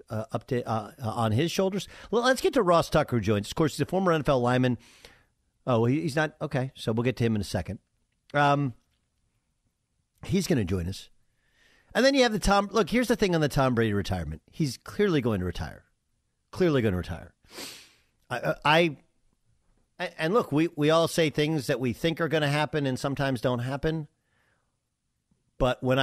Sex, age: male, 50-69